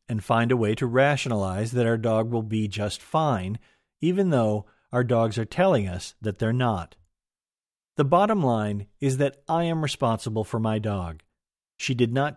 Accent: American